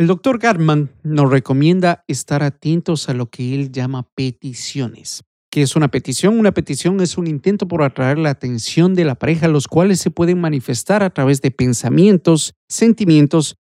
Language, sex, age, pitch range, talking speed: Spanish, male, 50-69, 130-170 Hz, 170 wpm